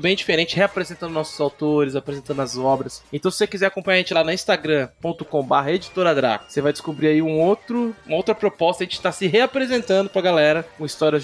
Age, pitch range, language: 20-39, 150-195 Hz, Portuguese